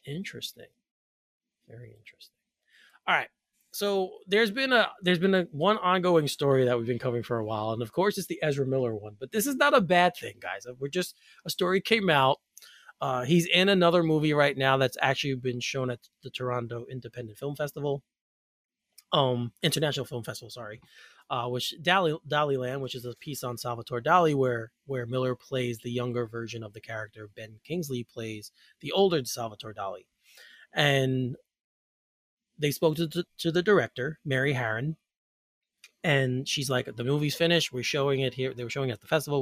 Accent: American